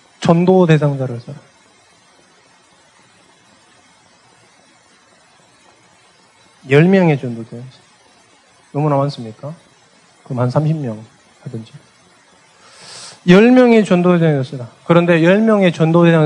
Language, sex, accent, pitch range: Korean, male, native, 140-195 Hz